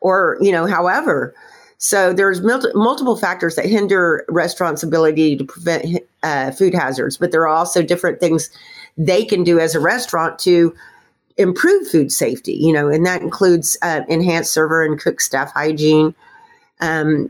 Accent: American